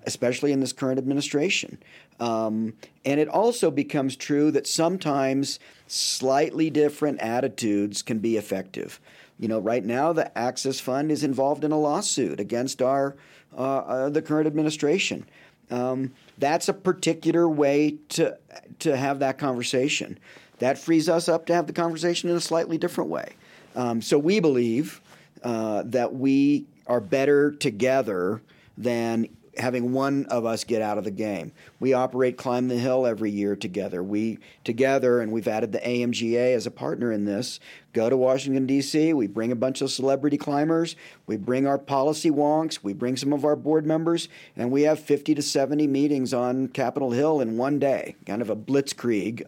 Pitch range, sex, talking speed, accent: 120-150 Hz, male, 170 wpm, American